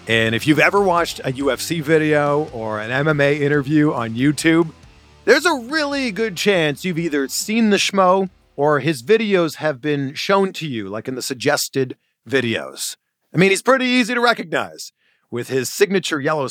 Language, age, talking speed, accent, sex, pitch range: English, 40-59, 175 wpm, American, male, 125-170 Hz